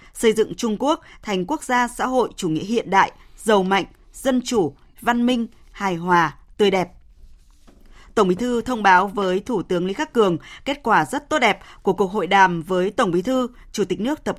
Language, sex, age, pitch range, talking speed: Vietnamese, female, 20-39, 190-245 Hz, 215 wpm